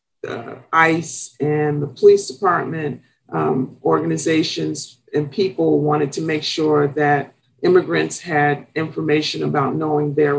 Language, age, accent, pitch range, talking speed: English, 50-69, American, 135-165 Hz, 115 wpm